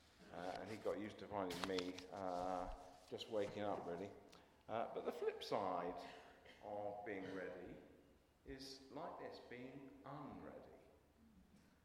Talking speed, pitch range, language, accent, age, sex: 130 wpm, 95-135 Hz, English, British, 50-69, male